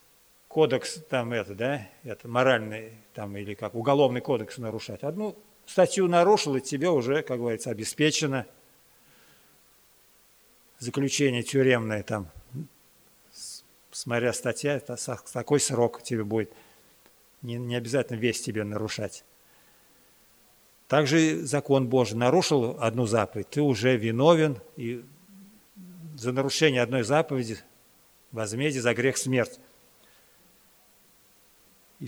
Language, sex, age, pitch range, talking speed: Russian, male, 50-69, 120-155 Hz, 110 wpm